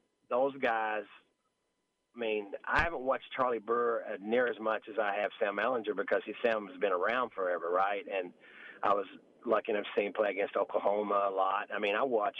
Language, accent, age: English, American, 40-59